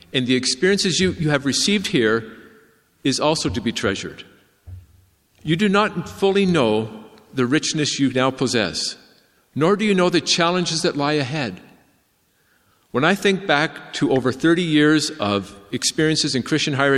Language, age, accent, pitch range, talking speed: English, 50-69, American, 115-155 Hz, 160 wpm